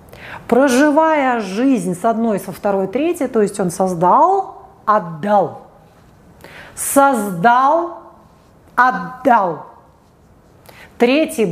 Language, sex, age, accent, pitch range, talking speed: Russian, female, 40-59, native, 195-280 Hz, 80 wpm